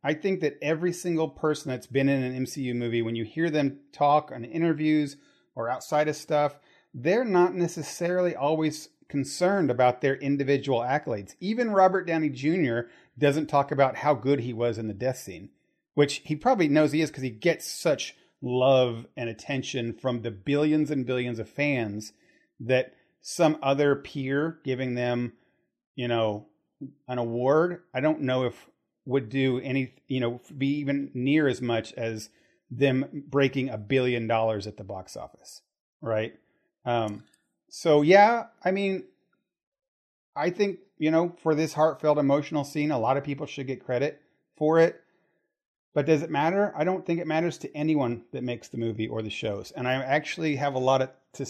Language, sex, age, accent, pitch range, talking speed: English, male, 40-59, American, 120-155 Hz, 175 wpm